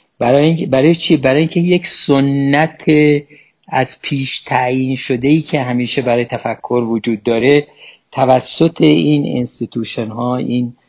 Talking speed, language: 125 wpm, Persian